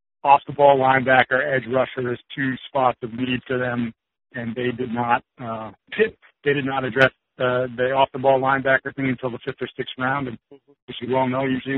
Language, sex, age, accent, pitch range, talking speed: English, male, 60-79, American, 125-140 Hz, 195 wpm